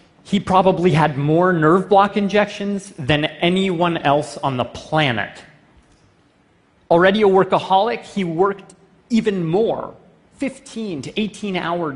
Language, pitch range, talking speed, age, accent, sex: English, 150-195 Hz, 110 wpm, 30-49, American, male